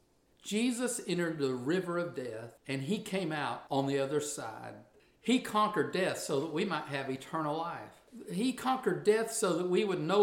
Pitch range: 150-205 Hz